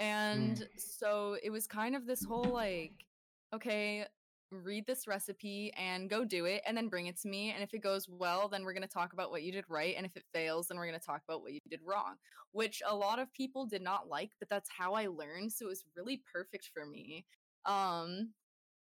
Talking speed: 235 wpm